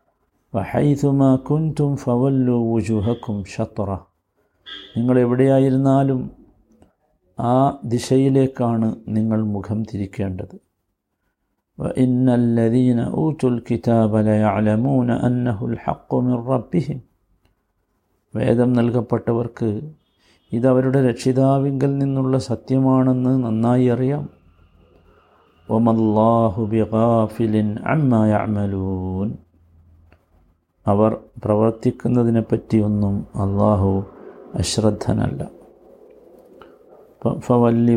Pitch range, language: 110-135 Hz, Malayalam